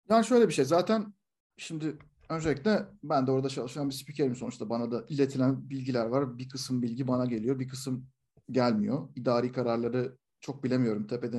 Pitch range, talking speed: 125-180 Hz, 170 wpm